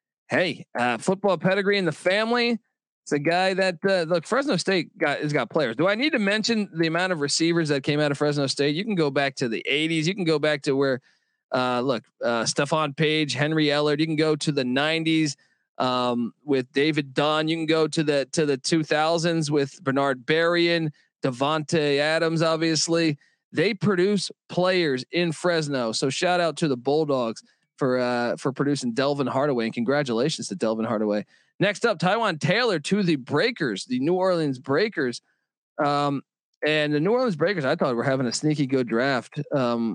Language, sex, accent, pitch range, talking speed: English, male, American, 140-175 Hz, 190 wpm